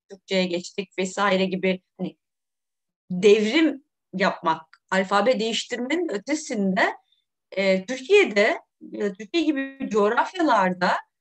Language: Turkish